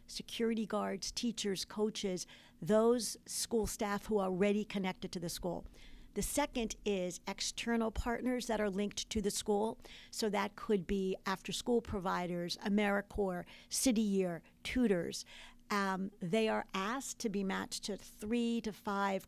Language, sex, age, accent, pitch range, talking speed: English, female, 50-69, American, 185-220 Hz, 145 wpm